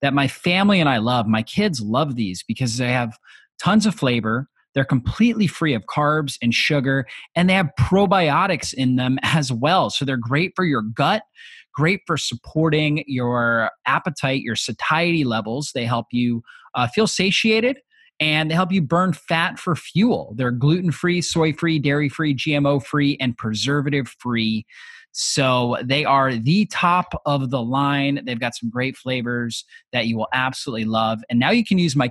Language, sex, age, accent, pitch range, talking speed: English, male, 30-49, American, 125-170 Hz, 170 wpm